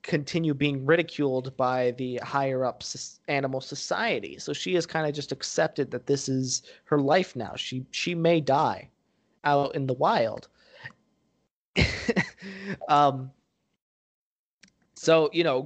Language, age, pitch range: English, 20-39, 130-155 Hz